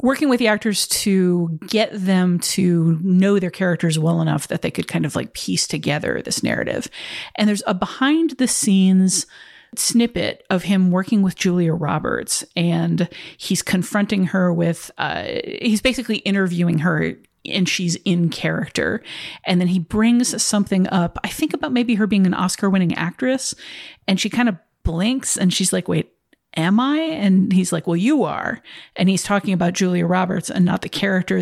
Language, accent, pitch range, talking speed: English, American, 175-225 Hz, 180 wpm